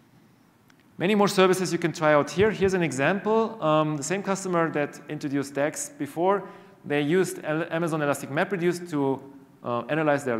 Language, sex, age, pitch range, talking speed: English, male, 40-59, 130-180 Hz, 160 wpm